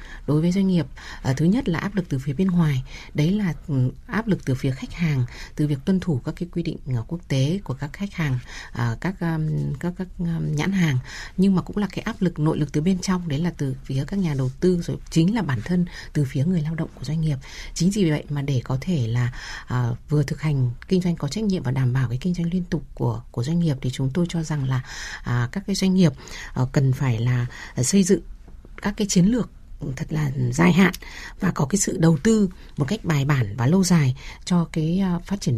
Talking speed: 240 wpm